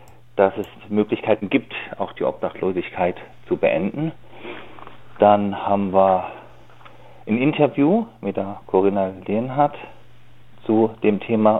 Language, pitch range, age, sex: German, 100-120 Hz, 40-59, male